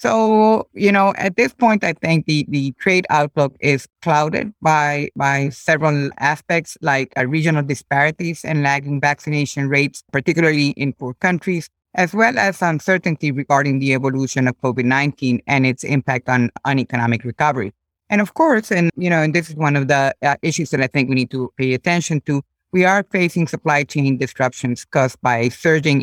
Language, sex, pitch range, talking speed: English, female, 135-170 Hz, 175 wpm